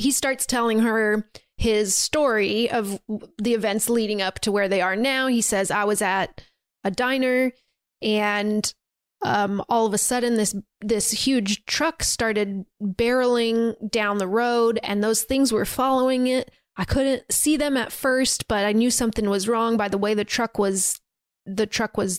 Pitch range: 205-235 Hz